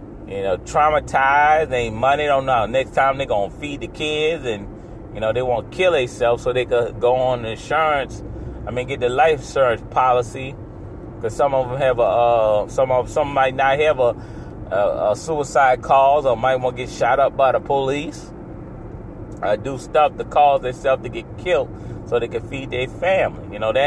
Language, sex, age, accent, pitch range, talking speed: English, male, 30-49, American, 115-145 Hz, 215 wpm